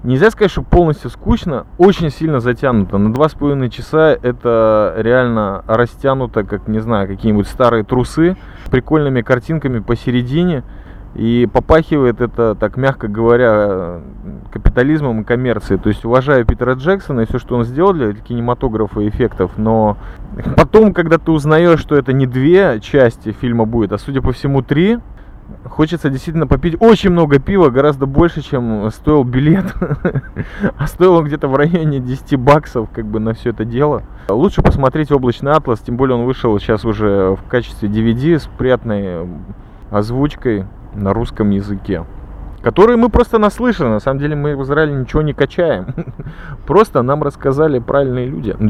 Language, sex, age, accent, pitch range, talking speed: Russian, male, 20-39, native, 110-150 Hz, 155 wpm